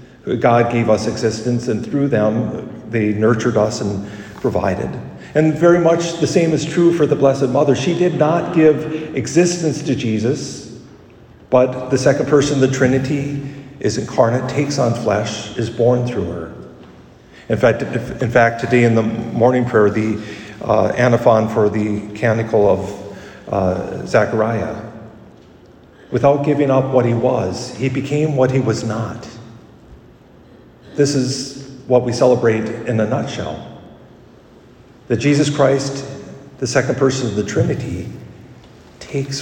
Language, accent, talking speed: English, American, 145 wpm